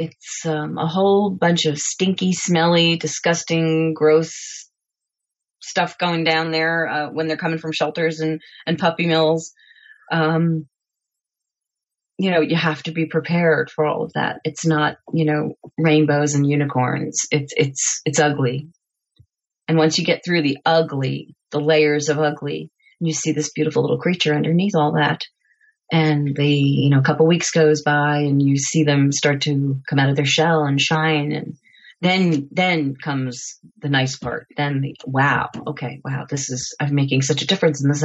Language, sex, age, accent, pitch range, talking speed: English, female, 30-49, American, 145-165 Hz, 170 wpm